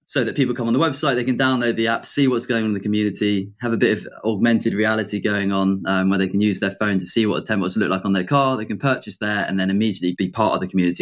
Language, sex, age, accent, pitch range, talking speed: English, male, 20-39, British, 95-115 Hz, 305 wpm